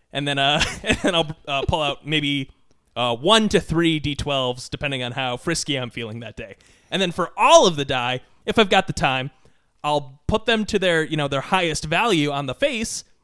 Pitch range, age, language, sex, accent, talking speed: 145-190 Hz, 20-39, English, male, American, 215 wpm